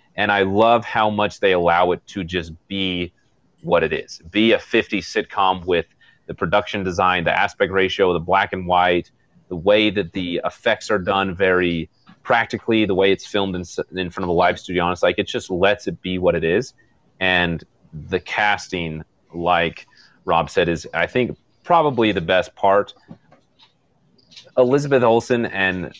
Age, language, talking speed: 30-49, English, 170 wpm